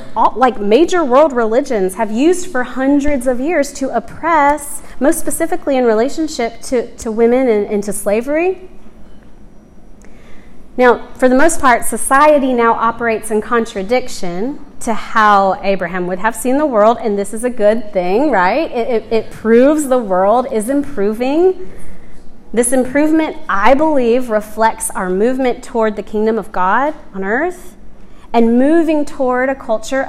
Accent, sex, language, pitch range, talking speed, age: American, female, English, 210-280 Hz, 150 wpm, 30-49